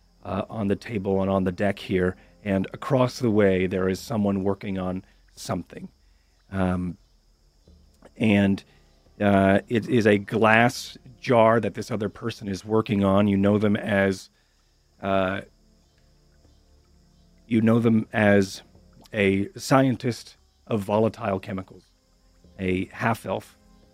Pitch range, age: 85-105 Hz, 40-59